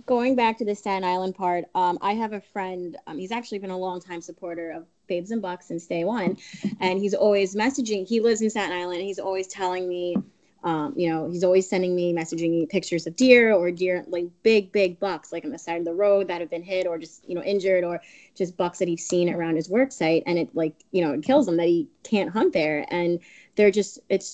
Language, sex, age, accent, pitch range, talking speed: English, female, 20-39, American, 175-205 Hz, 245 wpm